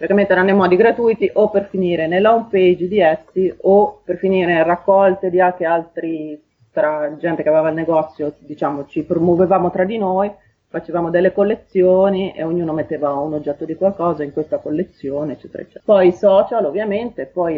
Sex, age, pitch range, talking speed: female, 30-49, 155-195 Hz, 165 wpm